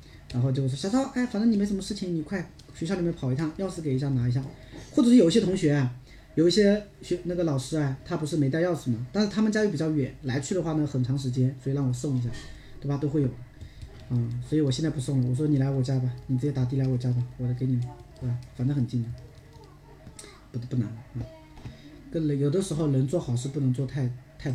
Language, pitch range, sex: Chinese, 125-155 Hz, male